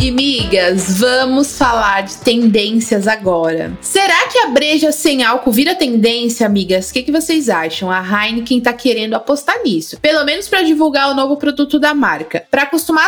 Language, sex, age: Portuguese, female, 20-39